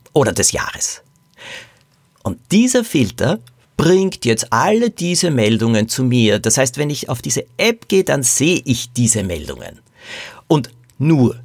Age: 50-69